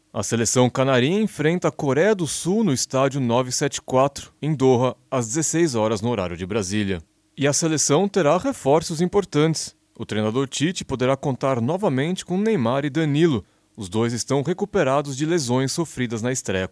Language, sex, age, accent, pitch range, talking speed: Portuguese, male, 30-49, Brazilian, 115-160 Hz, 160 wpm